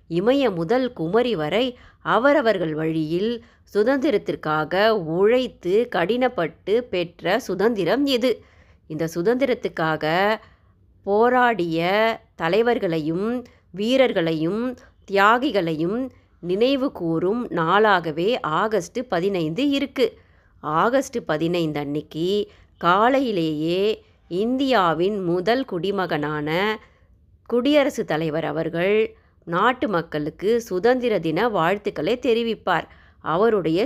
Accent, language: native, Tamil